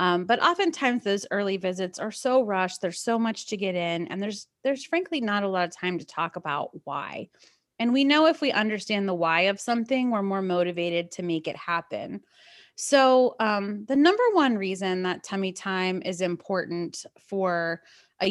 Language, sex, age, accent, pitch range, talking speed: English, female, 30-49, American, 180-255 Hz, 190 wpm